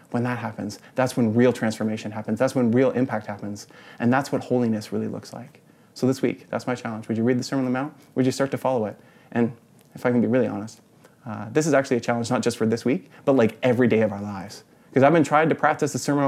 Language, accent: English, American